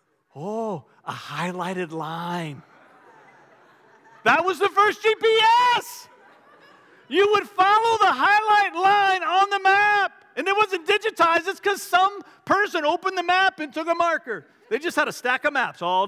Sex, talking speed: male, 155 wpm